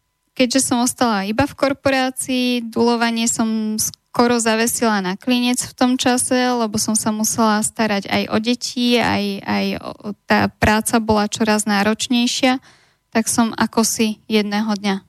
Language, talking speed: Slovak, 145 wpm